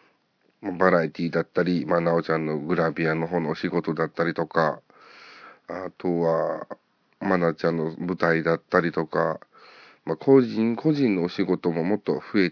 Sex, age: male, 40-59